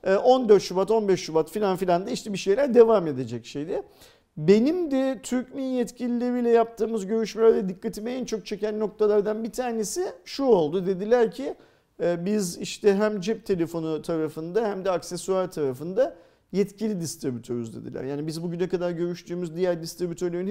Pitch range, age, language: 160-225 Hz, 50-69, Turkish